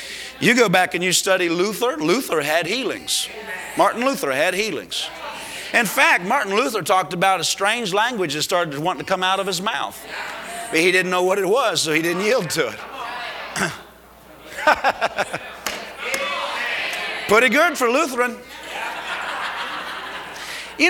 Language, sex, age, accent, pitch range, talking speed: English, male, 50-69, American, 150-210 Hz, 145 wpm